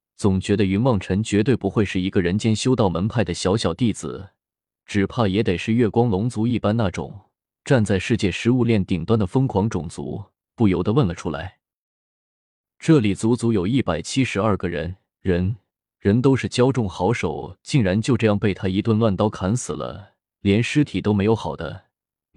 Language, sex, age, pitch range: Chinese, male, 20-39, 90-115 Hz